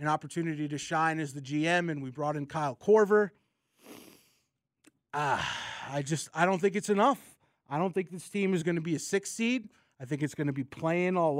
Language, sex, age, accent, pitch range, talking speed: English, male, 30-49, American, 145-200 Hz, 210 wpm